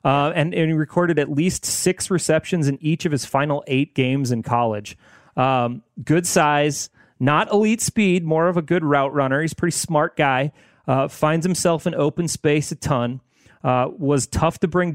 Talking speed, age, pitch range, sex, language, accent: 195 wpm, 30-49, 135-170 Hz, male, English, American